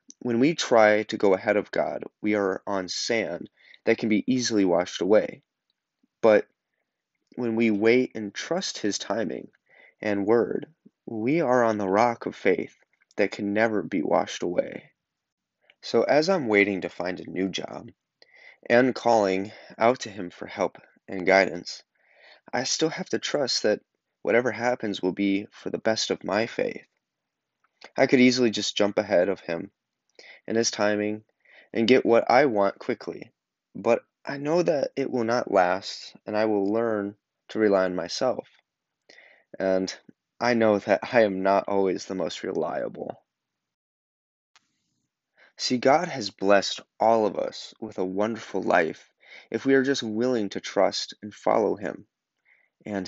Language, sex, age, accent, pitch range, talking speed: English, male, 20-39, American, 100-115 Hz, 160 wpm